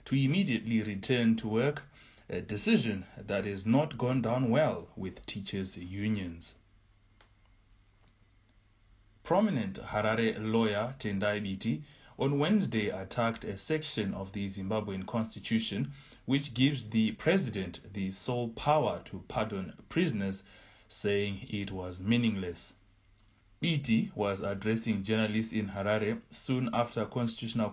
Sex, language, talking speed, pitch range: male, English, 115 wpm, 100-120 Hz